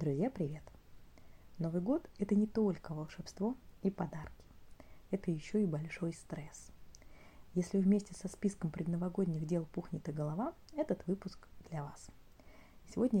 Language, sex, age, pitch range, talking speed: Russian, female, 20-39, 165-195 Hz, 135 wpm